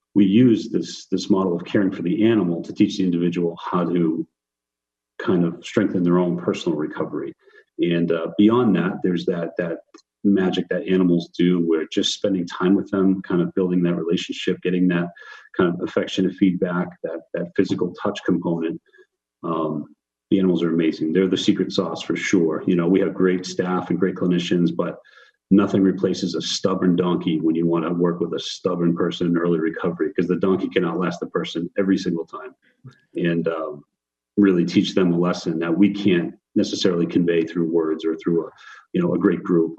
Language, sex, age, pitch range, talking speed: English, male, 40-59, 85-95 Hz, 190 wpm